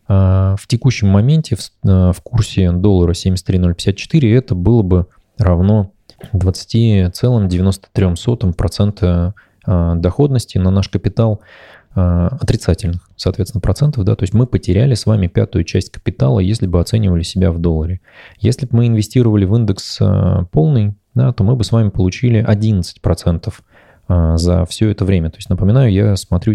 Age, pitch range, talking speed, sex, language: 20-39, 90-110 Hz, 135 wpm, male, Russian